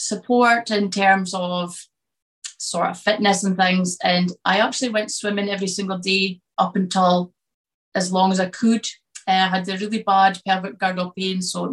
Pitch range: 180-195 Hz